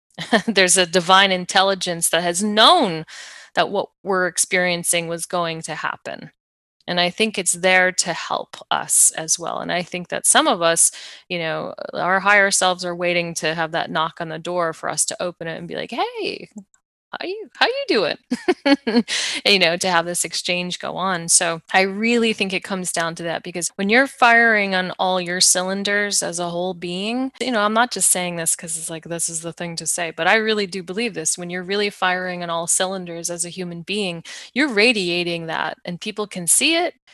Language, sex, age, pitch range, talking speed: English, female, 20-39, 175-205 Hz, 210 wpm